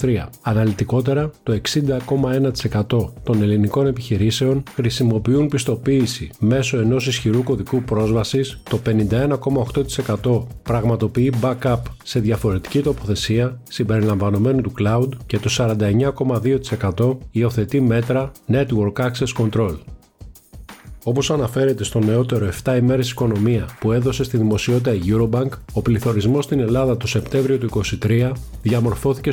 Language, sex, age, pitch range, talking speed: Greek, male, 40-59, 110-135 Hz, 105 wpm